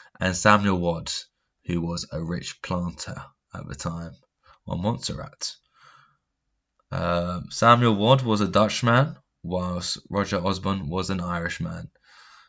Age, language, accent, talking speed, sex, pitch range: 10-29, English, British, 115 wpm, male, 90-105 Hz